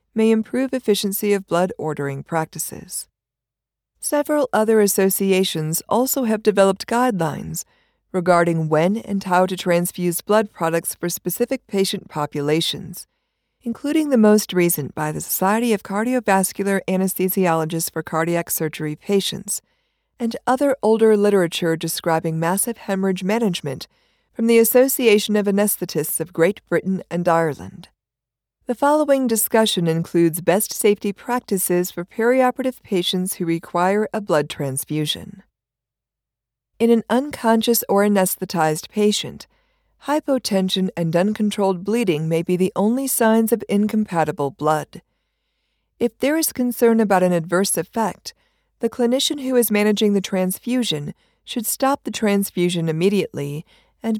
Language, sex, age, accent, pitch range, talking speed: English, female, 50-69, American, 170-225 Hz, 125 wpm